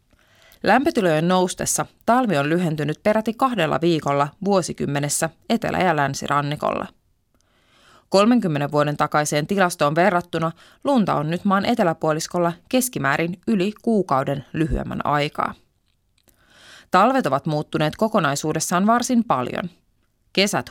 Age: 20-39